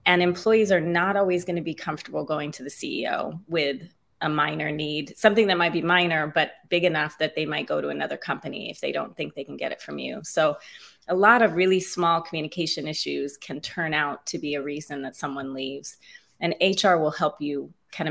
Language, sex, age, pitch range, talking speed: English, female, 30-49, 145-180 Hz, 220 wpm